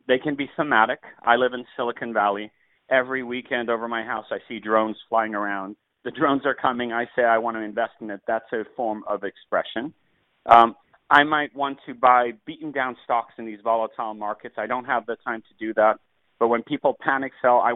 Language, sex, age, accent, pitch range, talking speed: English, male, 40-59, American, 110-135 Hz, 215 wpm